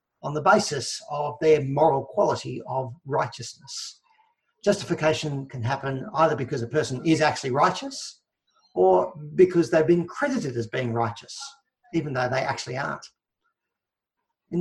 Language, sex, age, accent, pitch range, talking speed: English, male, 50-69, Australian, 130-185 Hz, 135 wpm